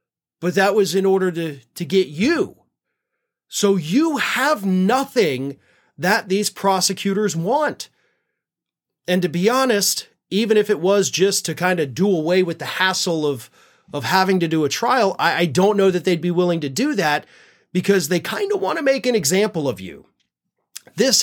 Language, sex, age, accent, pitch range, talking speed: English, male, 30-49, American, 145-200 Hz, 180 wpm